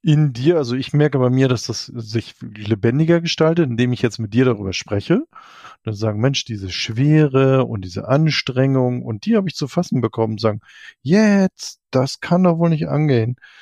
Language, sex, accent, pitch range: German, male, German, 110-145 Hz